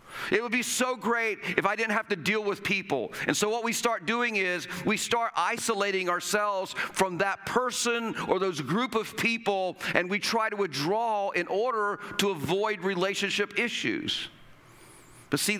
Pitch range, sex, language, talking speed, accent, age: 160-215 Hz, male, English, 175 wpm, American, 50-69